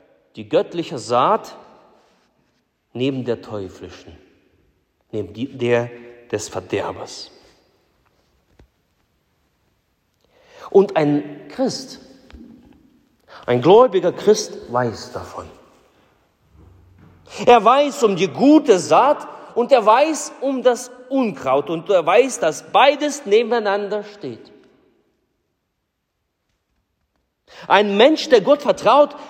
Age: 40-59